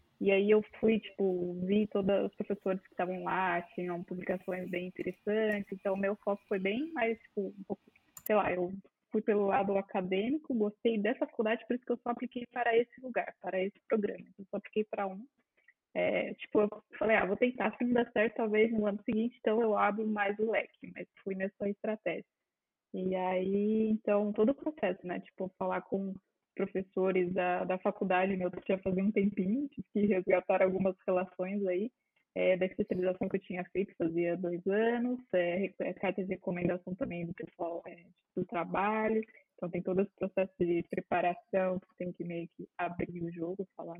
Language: Portuguese